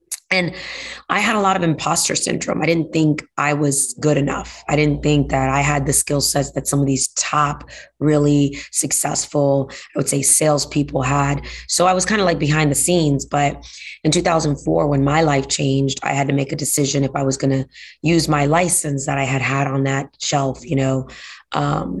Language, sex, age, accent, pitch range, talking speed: English, female, 20-39, American, 140-165 Hz, 205 wpm